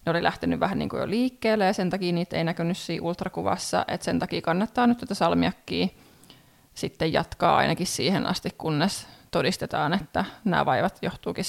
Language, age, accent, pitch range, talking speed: Finnish, 20-39, native, 170-200 Hz, 180 wpm